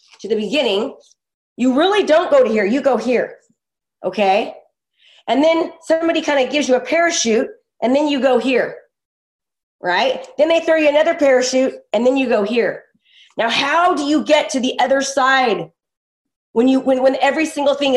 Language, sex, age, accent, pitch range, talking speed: English, female, 30-49, American, 230-310 Hz, 185 wpm